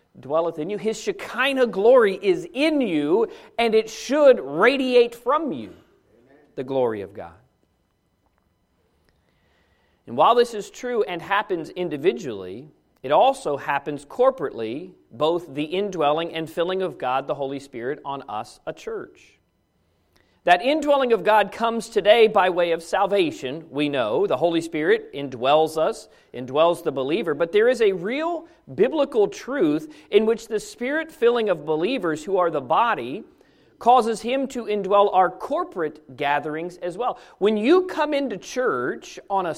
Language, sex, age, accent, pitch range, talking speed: English, male, 40-59, American, 170-260 Hz, 150 wpm